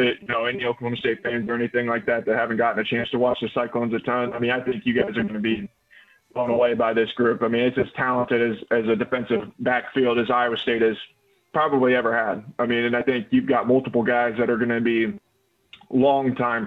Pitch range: 120-130 Hz